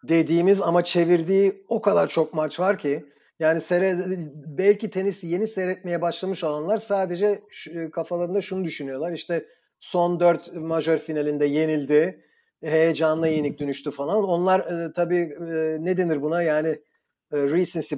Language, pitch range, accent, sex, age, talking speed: Turkish, 145-175 Hz, native, male, 40-59, 125 wpm